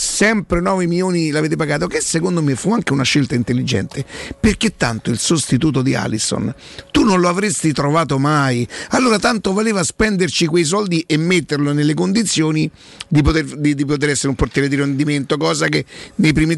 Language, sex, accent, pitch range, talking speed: Italian, male, native, 135-170 Hz, 170 wpm